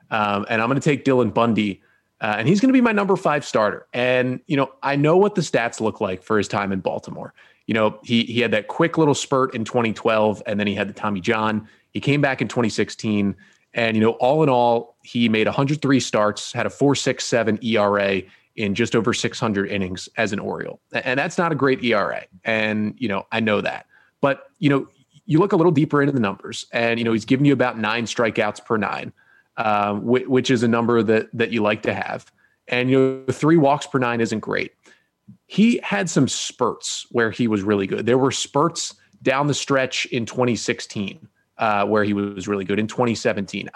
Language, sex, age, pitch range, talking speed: English, male, 30-49, 110-140 Hz, 215 wpm